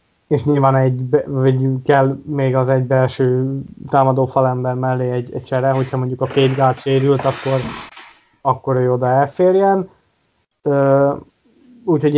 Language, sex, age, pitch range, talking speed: Hungarian, male, 20-39, 130-145 Hz, 140 wpm